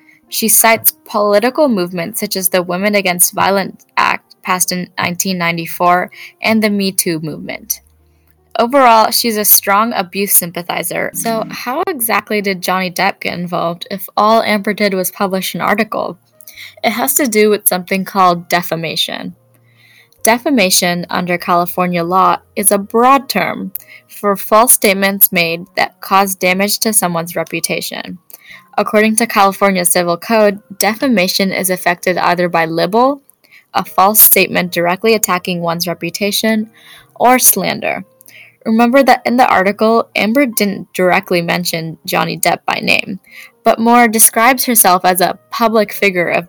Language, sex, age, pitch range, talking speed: English, female, 10-29, 180-220 Hz, 140 wpm